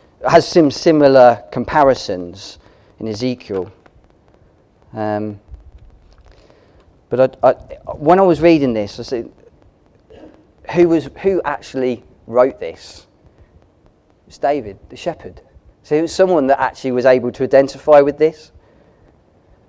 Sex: male